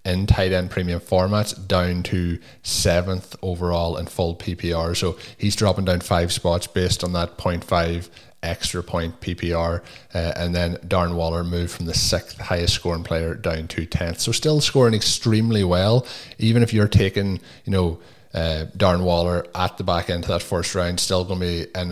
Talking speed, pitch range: 185 wpm, 85-100 Hz